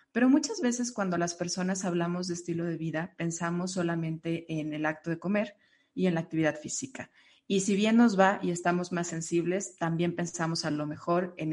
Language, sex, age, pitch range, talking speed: Spanish, female, 30-49, 160-195 Hz, 200 wpm